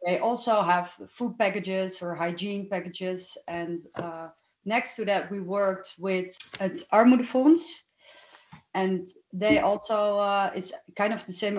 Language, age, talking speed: English, 30-49, 135 wpm